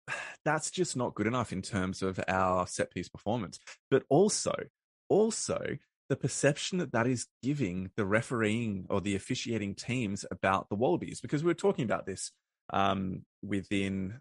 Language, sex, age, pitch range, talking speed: English, male, 20-39, 90-115 Hz, 160 wpm